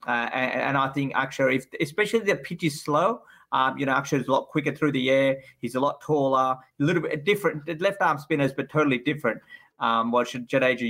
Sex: male